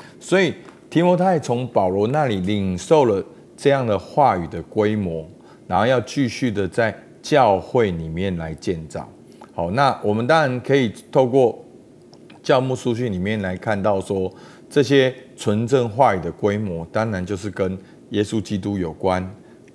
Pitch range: 95-130 Hz